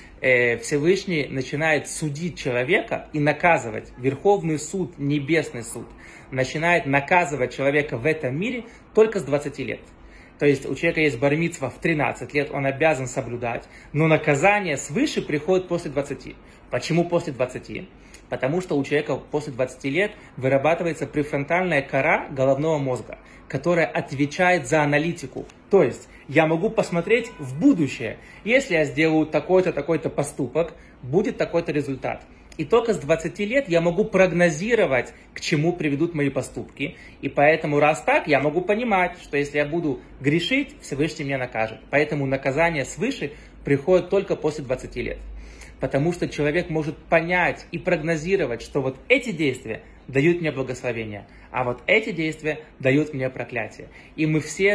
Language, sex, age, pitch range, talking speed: Russian, male, 20-39, 135-170 Hz, 145 wpm